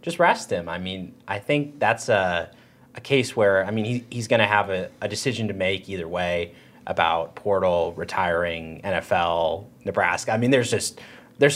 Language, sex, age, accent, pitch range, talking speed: English, male, 30-49, American, 95-120 Hz, 185 wpm